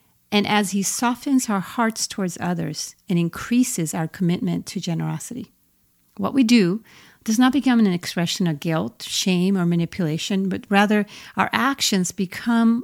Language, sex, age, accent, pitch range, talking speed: English, female, 50-69, American, 175-215 Hz, 150 wpm